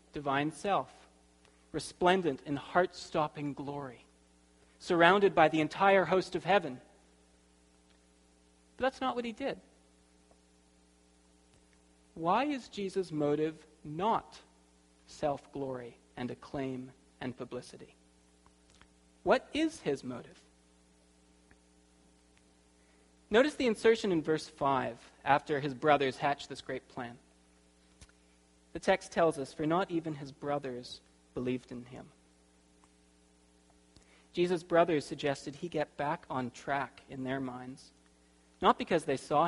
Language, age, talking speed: English, 40-59, 110 wpm